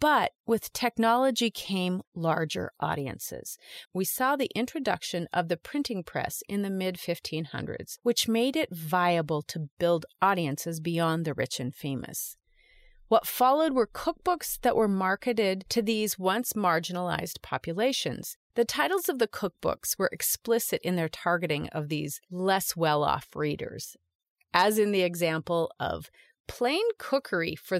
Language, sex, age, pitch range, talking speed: English, female, 30-49, 170-250 Hz, 140 wpm